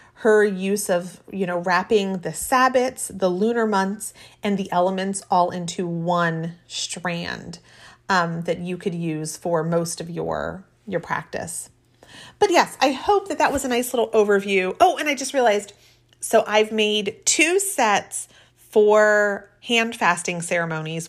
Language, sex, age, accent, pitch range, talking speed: English, female, 30-49, American, 180-225 Hz, 155 wpm